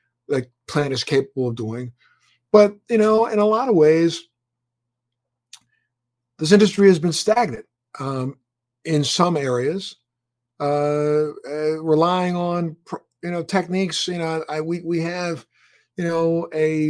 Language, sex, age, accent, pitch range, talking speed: English, male, 50-69, American, 140-175 Hz, 140 wpm